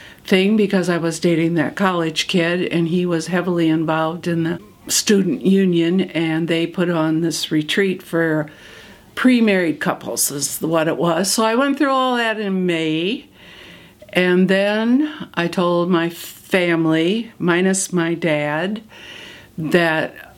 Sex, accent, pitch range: female, American, 165-210 Hz